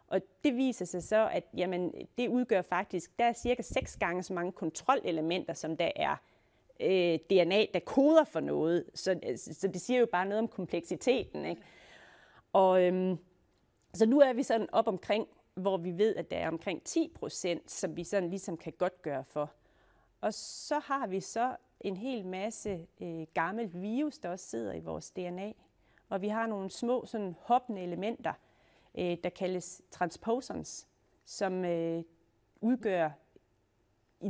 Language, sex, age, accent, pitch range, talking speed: Danish, female, 30-49, native, 170-220 Hz, 165 wpm